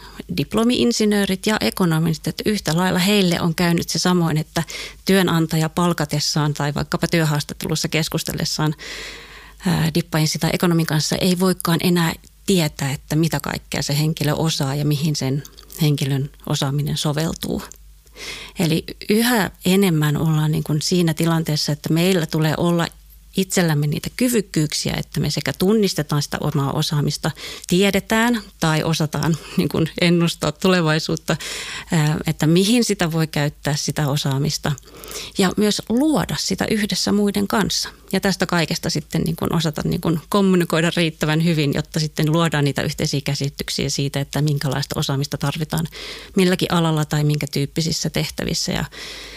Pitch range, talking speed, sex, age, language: 150-185 Hz, 130 wpm, female, 30-49, Finnish